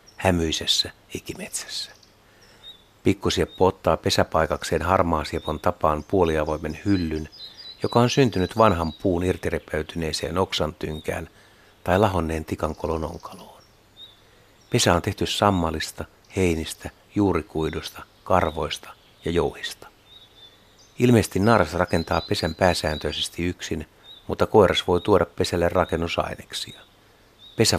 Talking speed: 95 wpm